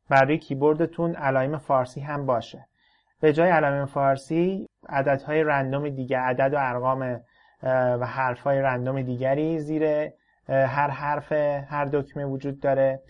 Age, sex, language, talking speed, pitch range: 30-49, male, Persian, 130 wpm, 130-155 Hz